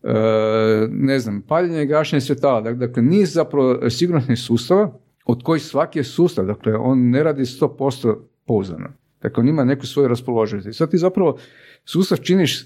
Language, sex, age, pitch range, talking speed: Croatian, male, 50-69, 115-145 Hz, 155 wpm